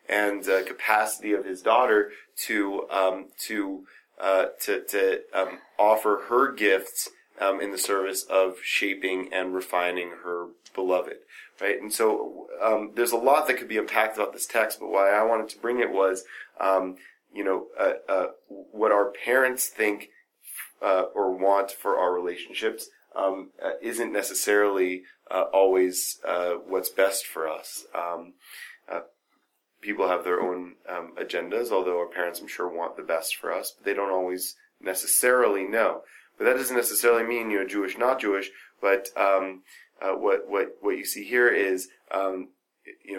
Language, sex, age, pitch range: English, male, 30-49, 95-140 Hz